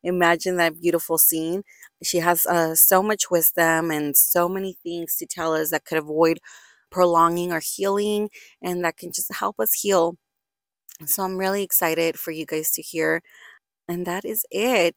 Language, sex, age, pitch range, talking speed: English, female, 20-39, 170-205 Hz, 170 wpm